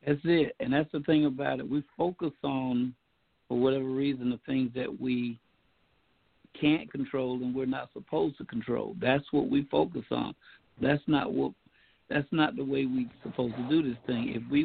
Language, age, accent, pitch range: English, 60-79, American, 125-155 Hz